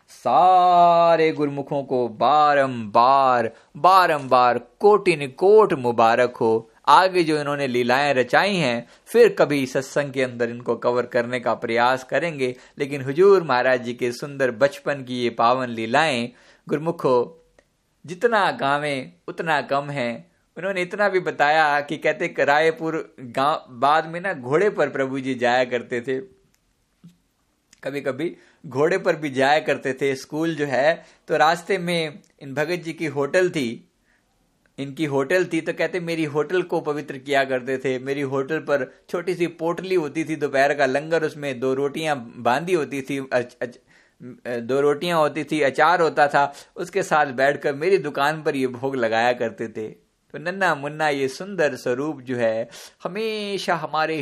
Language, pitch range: Hindi, 130-175 Hz